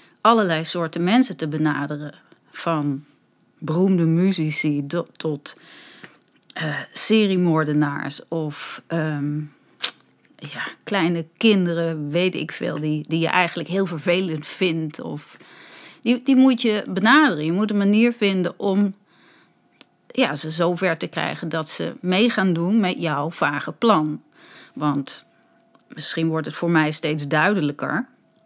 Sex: female